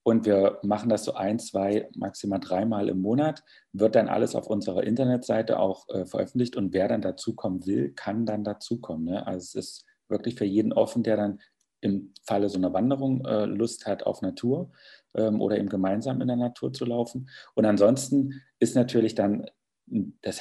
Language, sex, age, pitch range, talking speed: German, male, 40-59, 100-120 Hz, 180 wpm